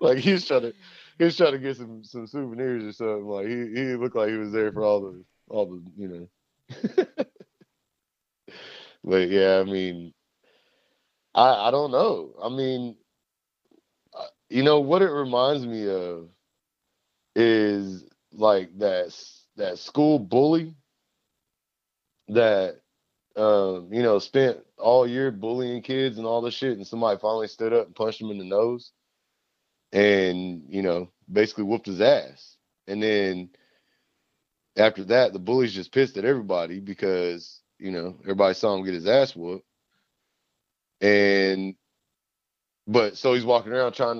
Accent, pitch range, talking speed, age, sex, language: American, 95-125 Hz, 150 wpm, 30-49, male, English